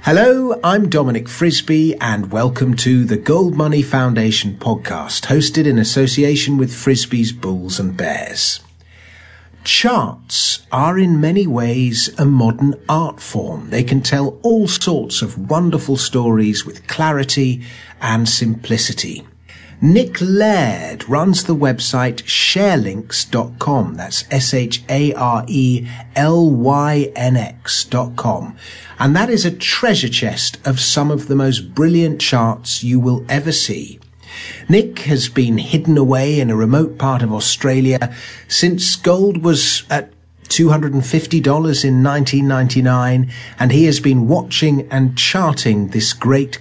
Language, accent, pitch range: English, British, 120-150 Hz